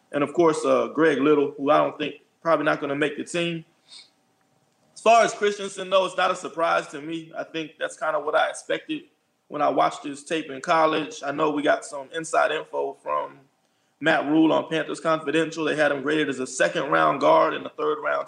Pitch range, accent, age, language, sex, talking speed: 150-170 Hz, American, 20-39, English, male, 220 wpm